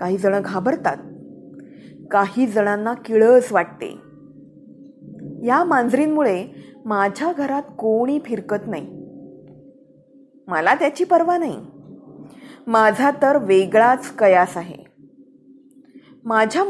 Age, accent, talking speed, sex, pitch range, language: 20-39, native, 85 wpm, female, 215-290 Hz, Marathi